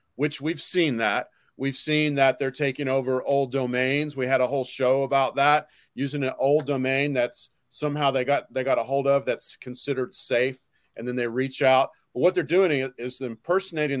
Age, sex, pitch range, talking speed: 40-59, male, 125-145 Hz, 195 wpm